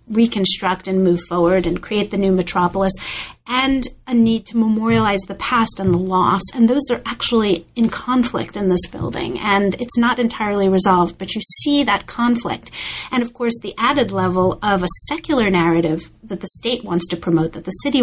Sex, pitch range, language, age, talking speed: female, 180-230 Hz, English, 40-59, 190 wpm